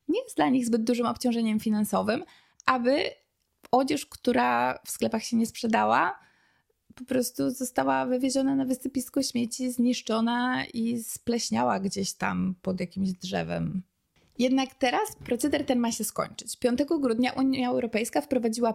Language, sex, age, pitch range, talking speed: Polish, female, 20-39, 185-245 Hz, 140 wpm